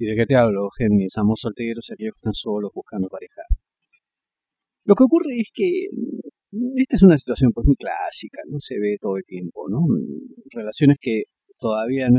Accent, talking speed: Argentinian, 175 wpm